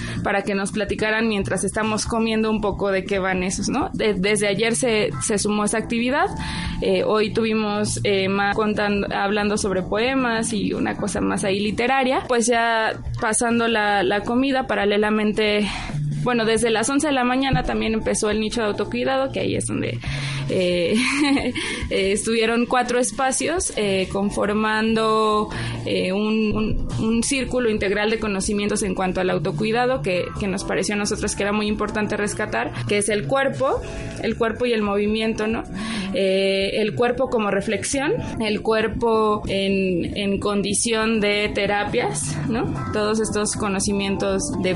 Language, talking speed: Spanish, 155 wpm